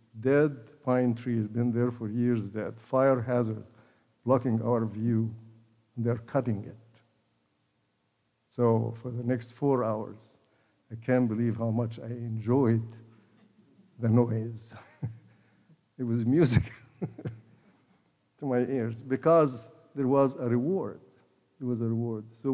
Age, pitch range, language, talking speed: 60-79, 115-135 Hz, English, 130 wpm